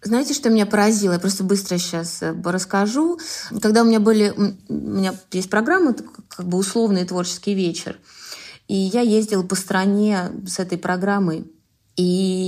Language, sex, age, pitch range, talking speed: Russian, female, 20-39, 180-215 Hz, 150 wpm